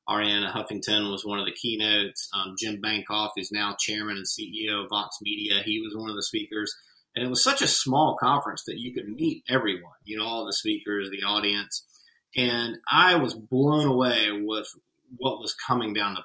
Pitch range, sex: 105-125 Hz, male